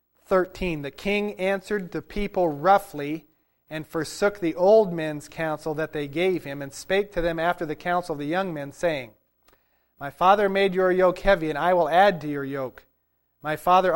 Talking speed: 190 wpm